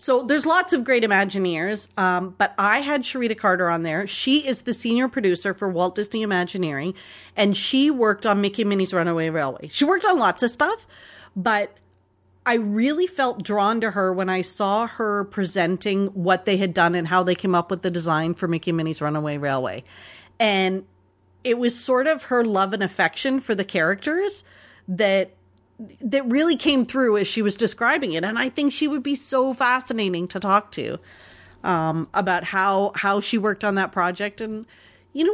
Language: English